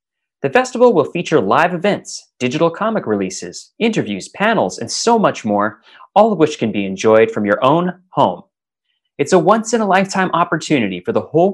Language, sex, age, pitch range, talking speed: English, male, 30-49, 130-185 Hz, 170 wpm